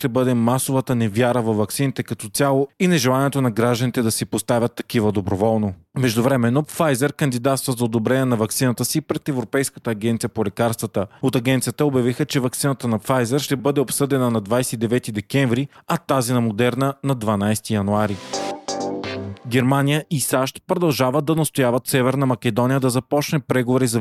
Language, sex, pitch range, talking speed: Bulgarian, male, 120-140 Hz, 155 wpm